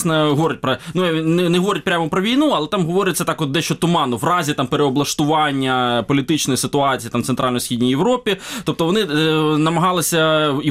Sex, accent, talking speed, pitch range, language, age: male, native, 175 wpm, 135-170 Hz, Ukrainian, 20-39